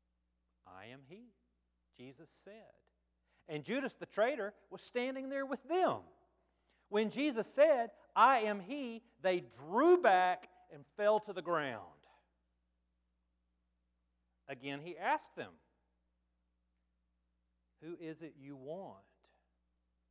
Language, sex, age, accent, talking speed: English, male, 40-59, American, 110 wpm